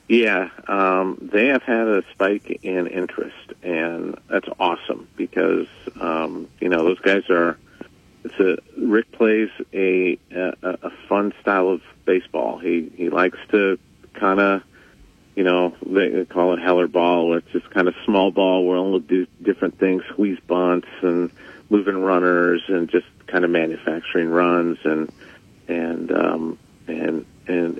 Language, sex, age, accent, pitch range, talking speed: English, male, 40-59, American, 85-100 Hz, 150 wpm